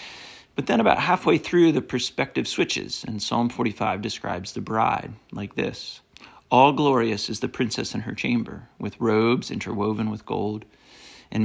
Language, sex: English, male